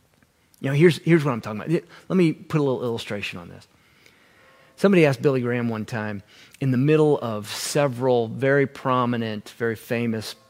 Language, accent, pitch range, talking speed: English, American, 115-160 Hz, 175 wpm